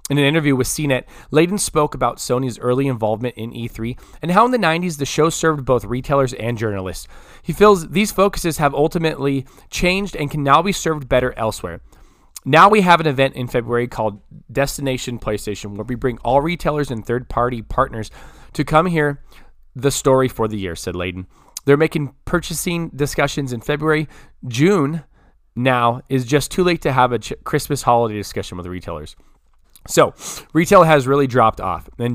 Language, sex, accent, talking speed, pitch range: English, male, American, 175 wpm, 115-155 Hz